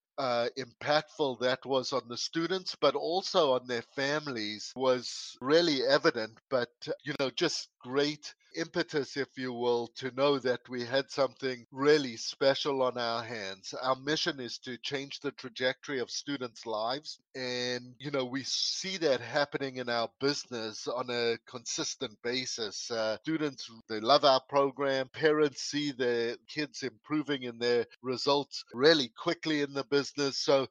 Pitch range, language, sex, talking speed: 125-150 Hz, English, male, 155 wpm